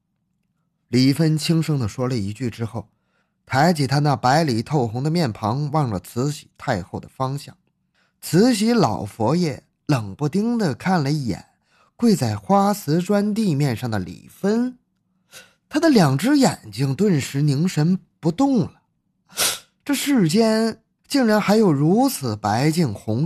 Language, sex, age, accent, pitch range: Chinese, male, 20-39, native, 125-190 Hz